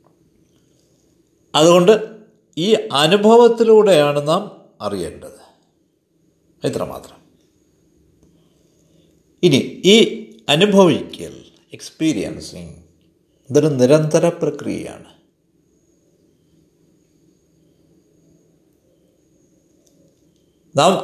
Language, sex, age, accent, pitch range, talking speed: Malayalam, male, 50-69, native, 150-205 Hz, 40 wpm